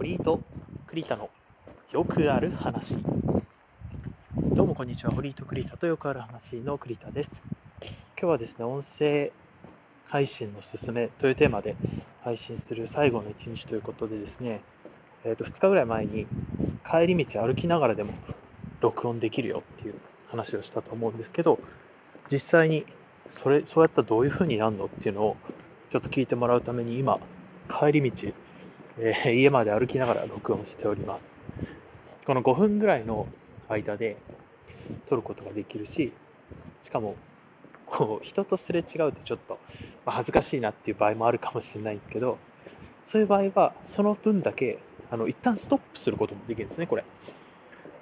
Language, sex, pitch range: Japanese, male, 115-160 Hz